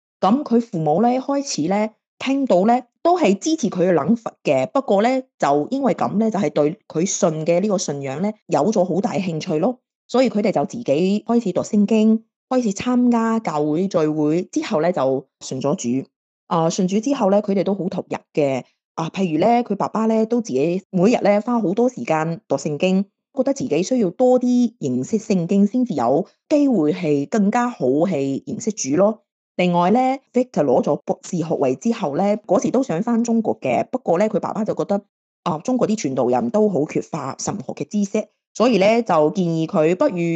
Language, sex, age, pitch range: Chinese, female, 30-49, 165-235 Hz